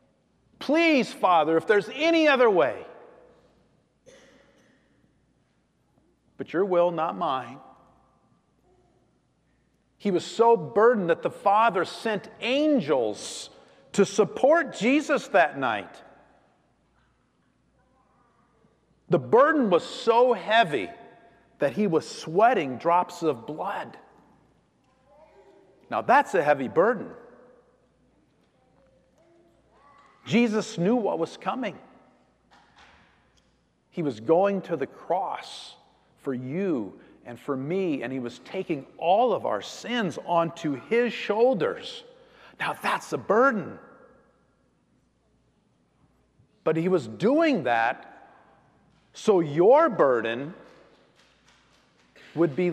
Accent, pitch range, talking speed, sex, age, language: American, 170-270 Hz, 95 wpm, male, 40-59, English